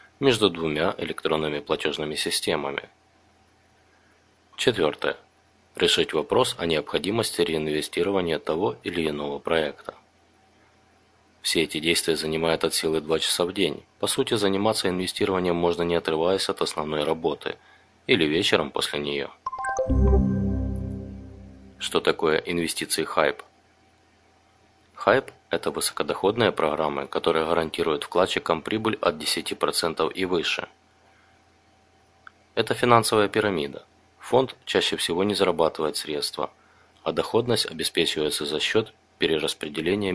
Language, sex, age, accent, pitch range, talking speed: Russian, male, 30-49, native, 80-100 Hz, 105 wpm